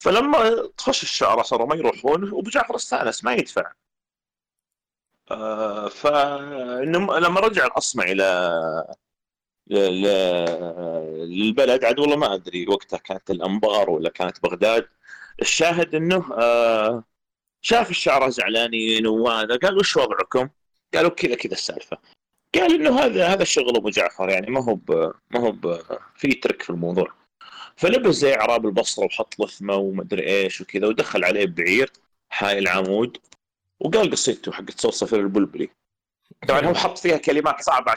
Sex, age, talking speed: male, 40-59, 125 wpm